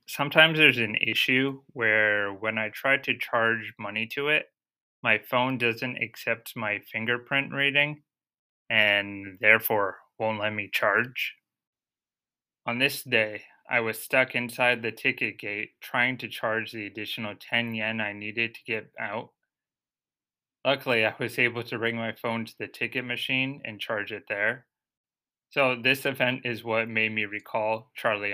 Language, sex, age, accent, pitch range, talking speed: English, male, 20-39, American, 110-130 Hz, 155 wpm